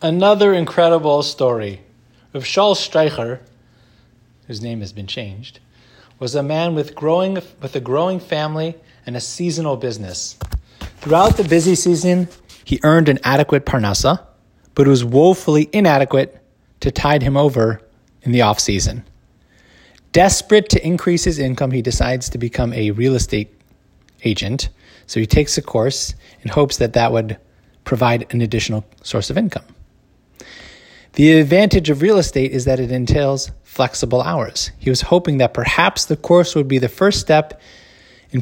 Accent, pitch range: American, 115-155 Hz